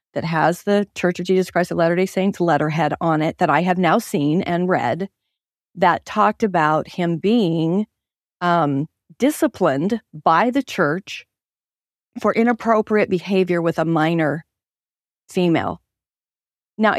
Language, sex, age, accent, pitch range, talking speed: English, female, 40-59, American, 170-225 Hz, 135 wpm